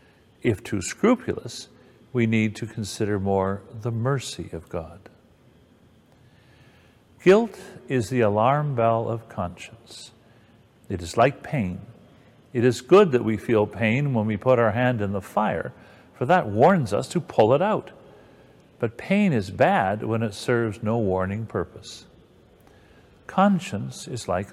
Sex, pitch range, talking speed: male, 100-125 Hz, 145 wpm